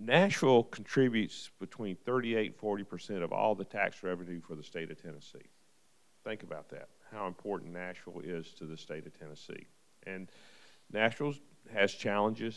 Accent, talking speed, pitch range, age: American, 160 wpm, 85-115 Hz, 50-69